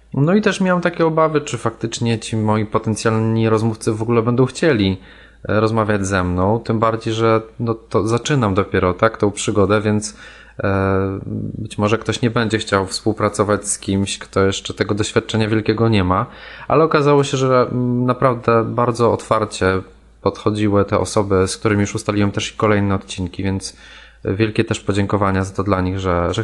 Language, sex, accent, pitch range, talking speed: Polish, male, native, 100-120 Hz, 170 wpm